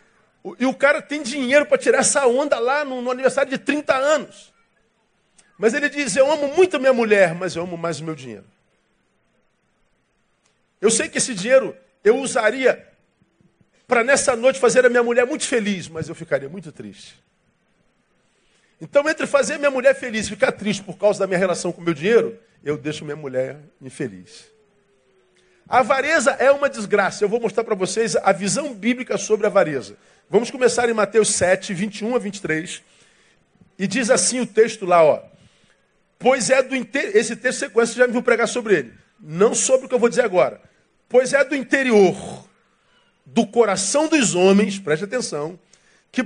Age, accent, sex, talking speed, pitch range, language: 50-69, Brazilian, male, 180 wpm, 165-250 Hz, Portuguese